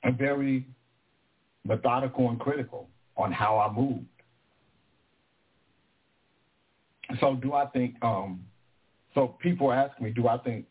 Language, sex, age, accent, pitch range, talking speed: English, male, 60-79, American, 115-135 Hz, 120 wpm